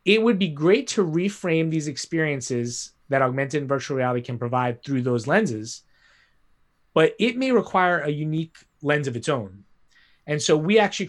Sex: male